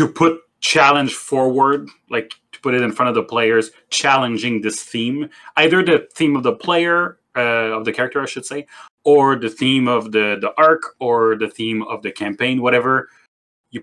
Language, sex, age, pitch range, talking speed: English, male, 30-49, 110-140 Hz, 190 wpm